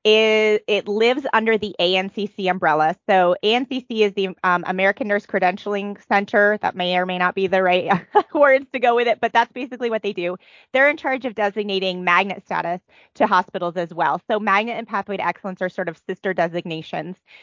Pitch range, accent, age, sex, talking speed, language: 180-220 Hz, American, 30-49, female, 195 wpm, English